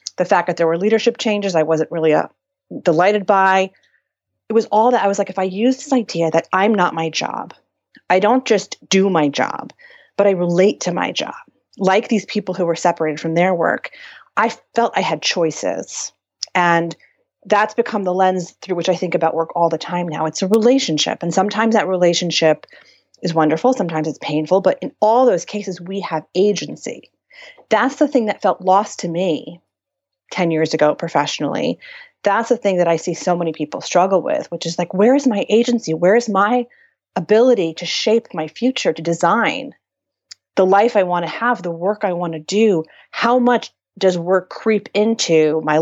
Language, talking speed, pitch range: English, 195 wpm, 165-220 Hz